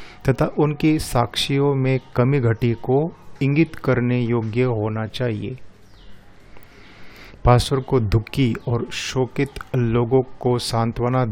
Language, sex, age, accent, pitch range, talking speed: Hindi, male, 30-49, native, 110-130 Hz, 105 wpm